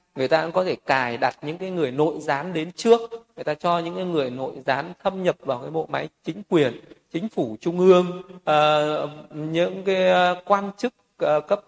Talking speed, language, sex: 195 wpm, Vietnamese, male